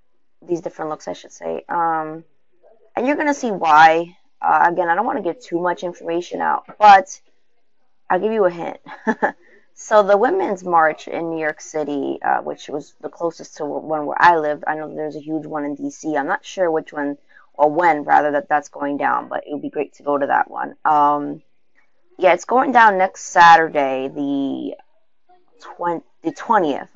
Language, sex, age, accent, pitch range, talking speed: English, female, 20-39, American, 155-220 Hz, 195 wpm